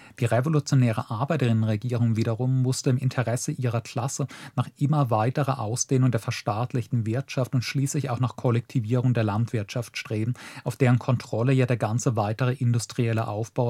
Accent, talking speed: German, 145 wpm